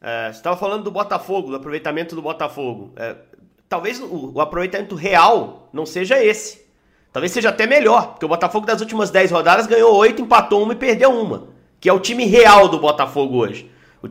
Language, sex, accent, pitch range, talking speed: Portuguese, male, Brazilian, 150-220 Hz, 195 wpm